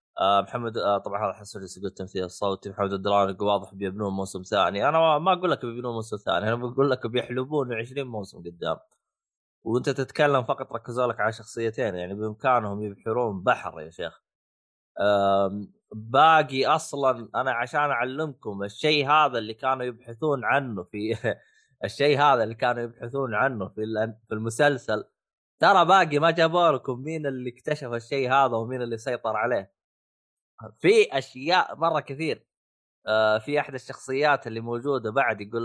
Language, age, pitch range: Arabic, 20-39, 110-140 Hz